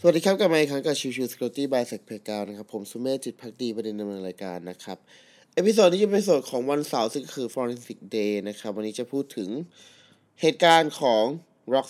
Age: 20-39